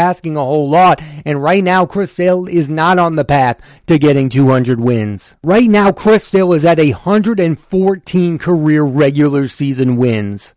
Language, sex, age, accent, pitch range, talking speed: English, male, 30-49, American, 145-190 Hz, 165 wpm